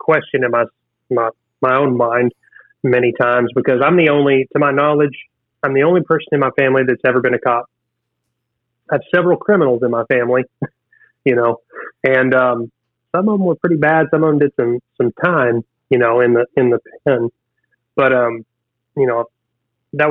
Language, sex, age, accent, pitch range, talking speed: English, male, 30-49, American, 120-150 Hz, 190 wpm